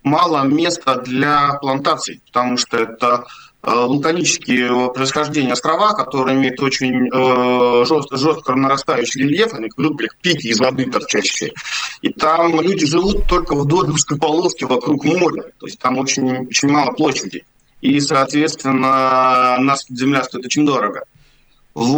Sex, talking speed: male, 140 wpm